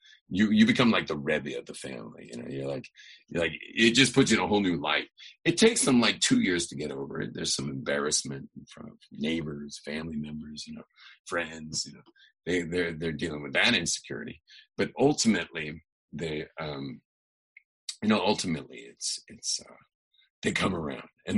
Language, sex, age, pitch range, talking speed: English, male, 40-59, 75-110 Hz, 195 wpm